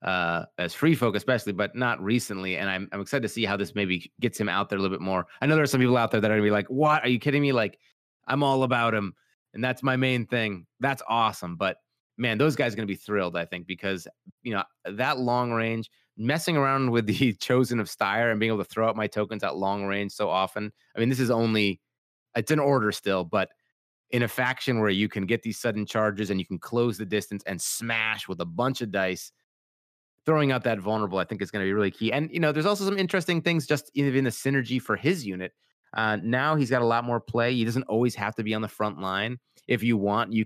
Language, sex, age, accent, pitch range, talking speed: English, male, 30-49, American, 105-125 Hz, 260 wpm